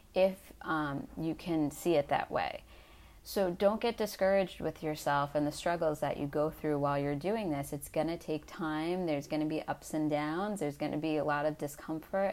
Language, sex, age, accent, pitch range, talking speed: English, female, 30-49, American, 150-175 Hz, 205 wpm